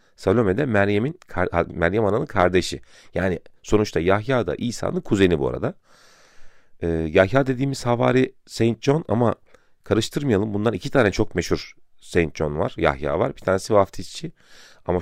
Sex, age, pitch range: male, 40-59, 85-115 Hz